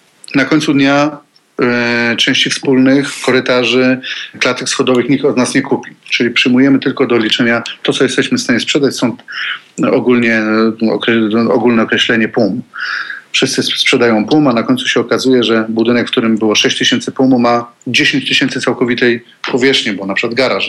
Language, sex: Polish, male